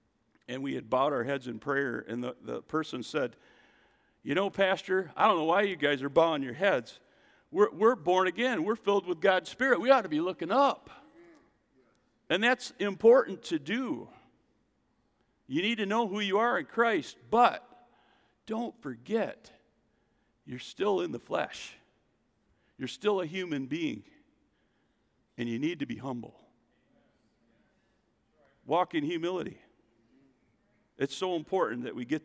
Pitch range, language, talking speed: 160-260 Hz, English, 155 wpm